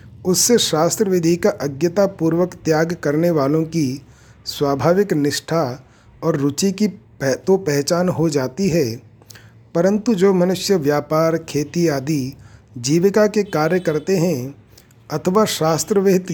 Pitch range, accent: 130-180 Hz, native